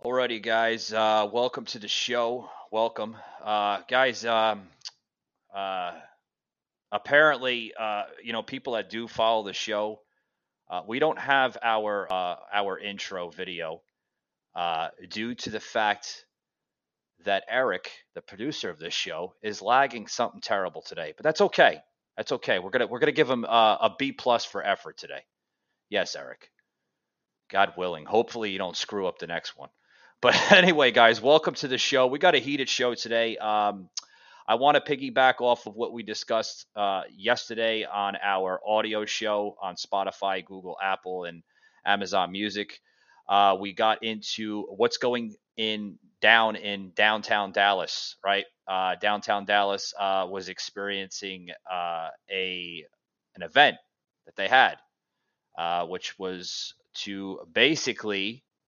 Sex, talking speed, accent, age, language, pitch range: male, 150 wpm, American, 30-49, English, 100-115 Hz